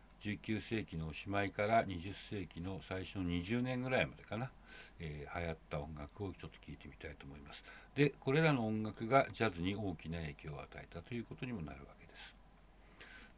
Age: 60-79